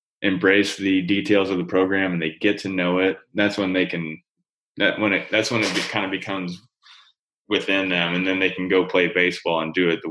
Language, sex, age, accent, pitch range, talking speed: English, male, 20-39, American, 85-95 Hz, 225 wpm